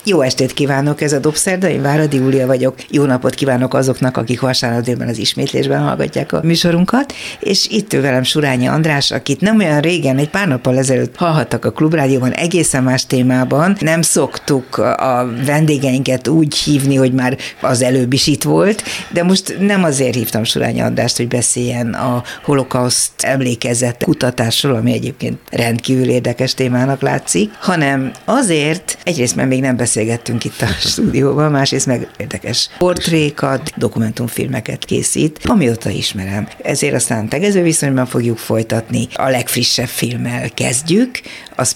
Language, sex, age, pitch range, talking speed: Hungarian, female, 60-79, 125-150 Hz, 145 wpm